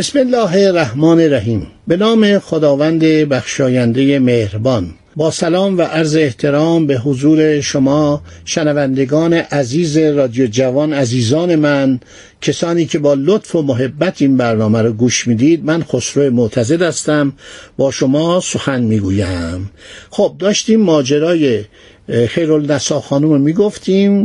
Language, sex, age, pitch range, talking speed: Persian, male, 60-79, 130-170 Hz, 120 wpm